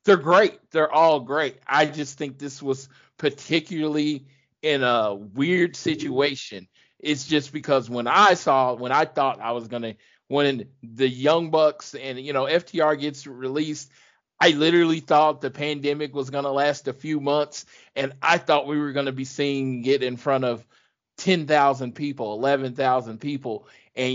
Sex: male